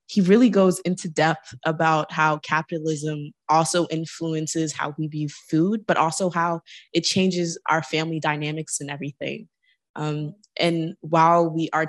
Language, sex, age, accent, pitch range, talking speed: English, female, 20-39, American, 155-180 Hz, 145 wpm